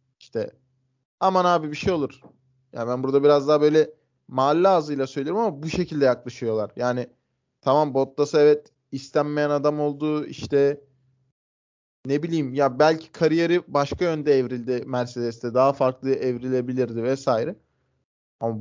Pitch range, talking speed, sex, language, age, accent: 125-145 Hz, 130 wpm, male, Turkish, 20-39, native